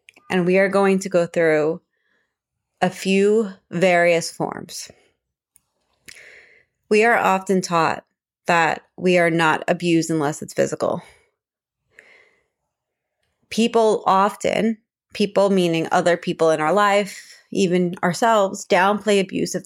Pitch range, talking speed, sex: 165-200 Hz, 115 wpm, female